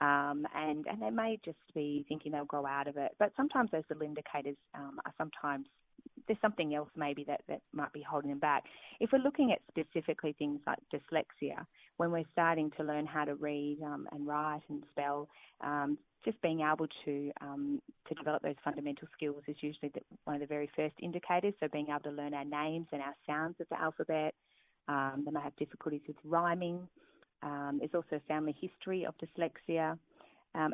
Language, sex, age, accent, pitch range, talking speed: English, female, 20-39, Australian, 145-165 Hz, 195 wpm